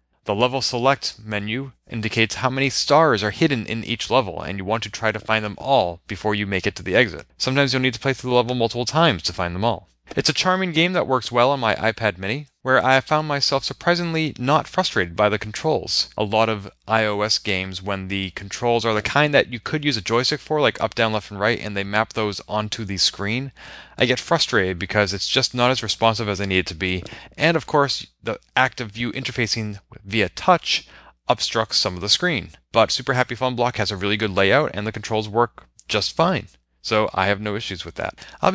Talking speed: 230 wpm